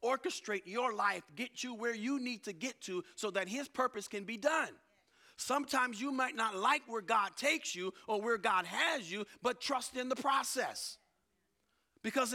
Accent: American